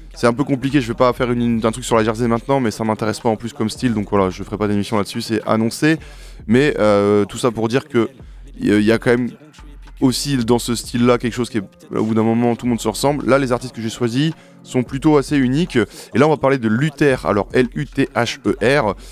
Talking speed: 265 wpm